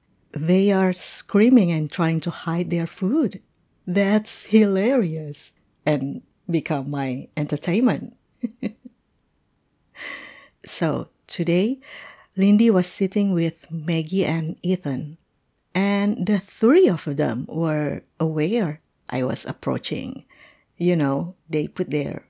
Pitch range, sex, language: 155-215 Hz, female, English